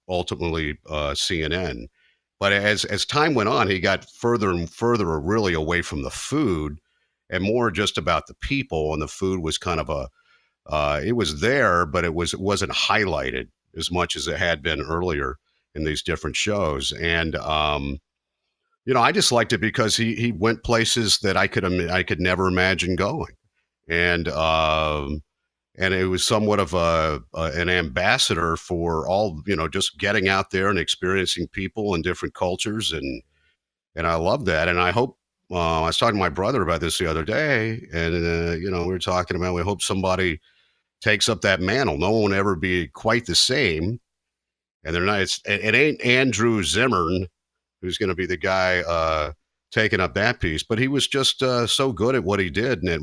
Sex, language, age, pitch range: male, English, 50-69, 80-105 Hz